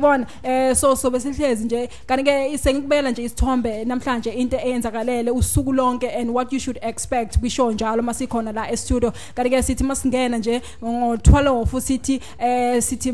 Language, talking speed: English, 90 wpm